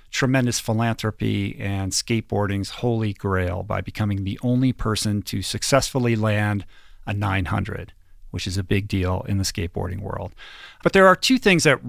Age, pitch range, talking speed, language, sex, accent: 40-59, 100-130 Hz, 155 wpm, English, male, American